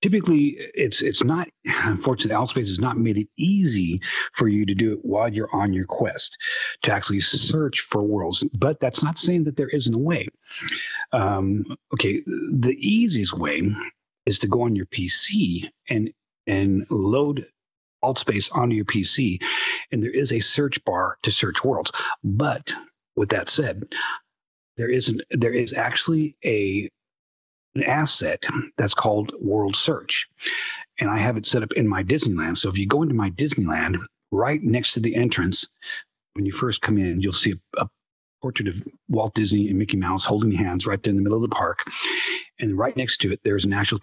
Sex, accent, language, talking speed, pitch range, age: male, American, English, 180 wpm, 100-140 Hz, 40-59